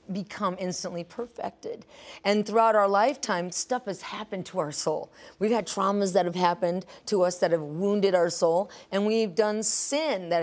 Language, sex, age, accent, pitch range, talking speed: English, female, 30-49, American, 175-235 Hz, 180 wpm